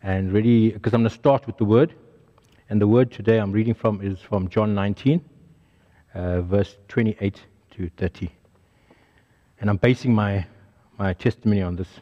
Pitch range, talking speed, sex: 95-125 Hz, 170 wpm, male